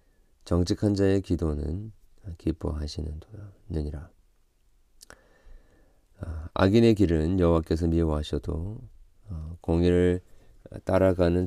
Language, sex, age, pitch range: Korean, male, 40-59, 80-95 Hz